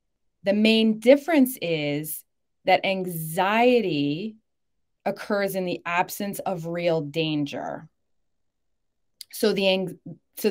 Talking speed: 90 wpm